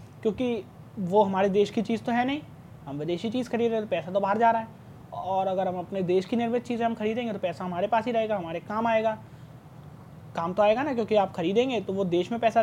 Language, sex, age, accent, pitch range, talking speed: Hindi, male, 20-39, native, 155-225 Hz, 250 wpm